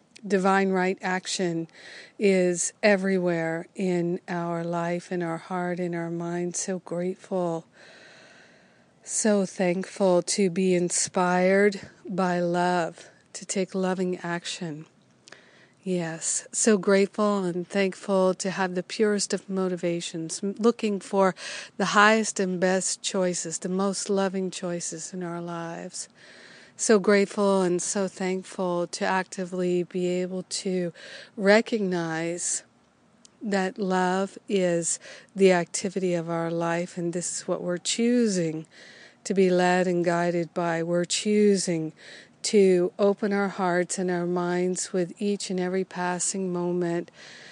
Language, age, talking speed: English, 50-69, 125 wpm